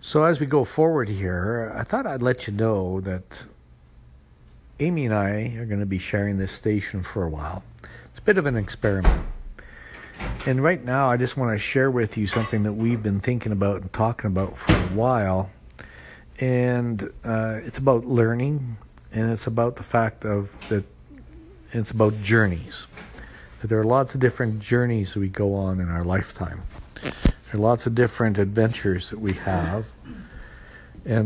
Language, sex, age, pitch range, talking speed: English, male, 50-69, 90-120 Hz, 175 wpm